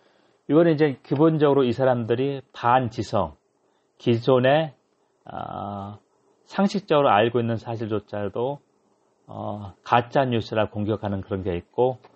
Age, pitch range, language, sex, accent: 40-59, 100-140 Hz, Korean, male, native